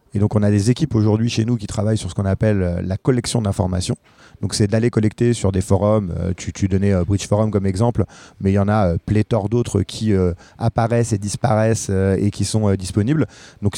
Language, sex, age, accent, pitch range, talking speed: French, male, 30-49, French, 100-120 Hz, 220 wpm